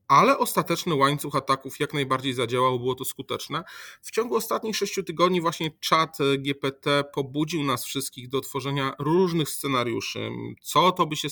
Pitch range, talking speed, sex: 130-150 Hz, 155 wpm, male